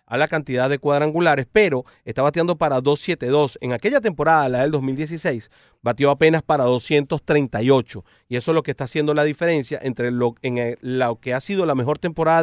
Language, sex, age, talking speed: Spanish, male, 40-59, 195 wpm